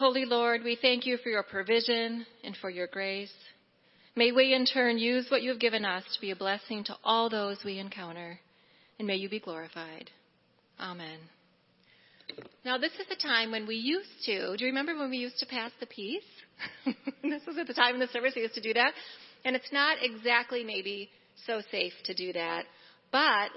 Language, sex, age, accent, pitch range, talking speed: English, female, 30-49, American, 200-255 Hz, 205 wpm